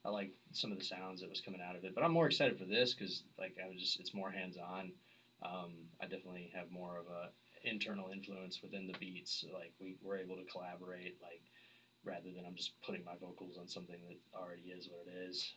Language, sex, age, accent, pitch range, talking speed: English, male, 20-39, American, 90-120 Hz, 240 wpm